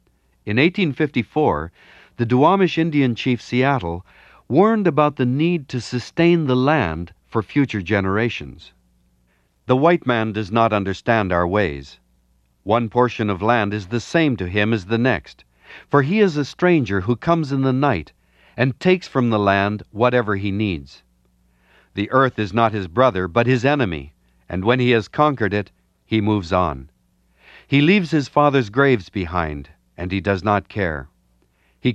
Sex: male